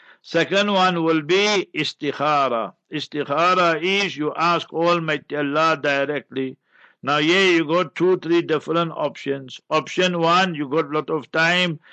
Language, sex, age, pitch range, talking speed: English, male, 60-79, 145-175 Hz, 140 wpm